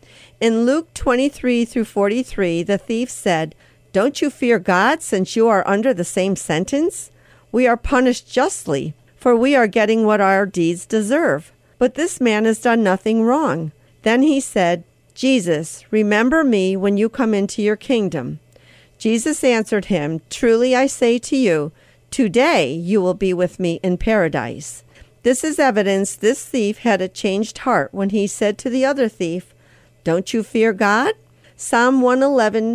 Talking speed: 160 wpm